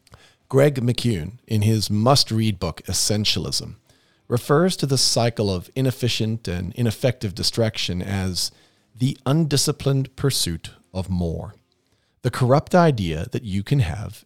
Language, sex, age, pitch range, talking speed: English, male, 40-59, 100-135 Hz, 120 wpm